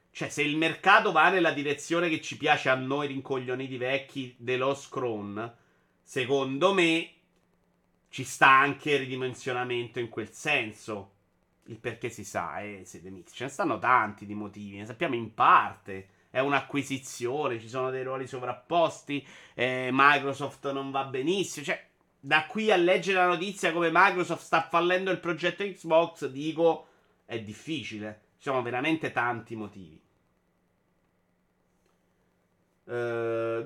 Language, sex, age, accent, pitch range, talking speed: Italian, male, 30-49, native, 120-170 Hz, 140 wpm